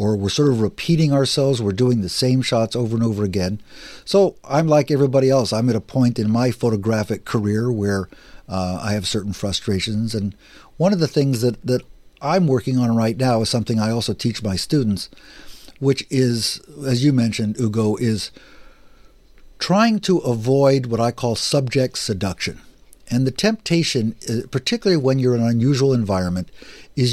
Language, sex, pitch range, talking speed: English, male, 105-135 Hz, 175 wpm